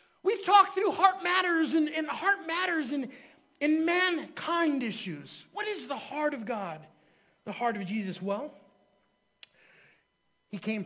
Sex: male